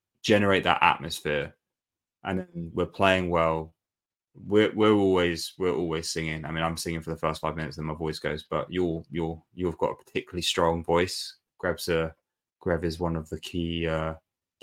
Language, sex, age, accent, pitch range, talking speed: English, male, 20-39, British, 85-95 Hz, 180 wpm